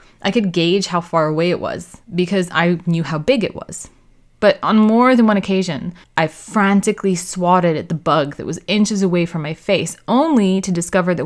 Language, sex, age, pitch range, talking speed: English, female, 20-39, 165-205 Hz, 205 wpm